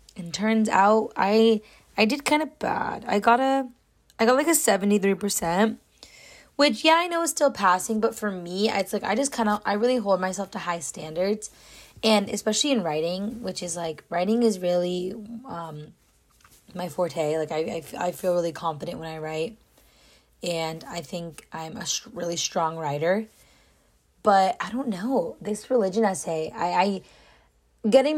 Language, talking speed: English, 175 wpm